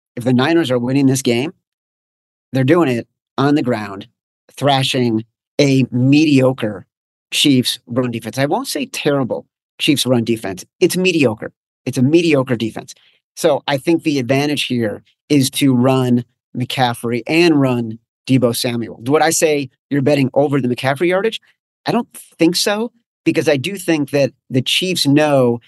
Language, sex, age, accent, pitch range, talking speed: English, male, 40-59, American, 125-150 Hz, 155 wpm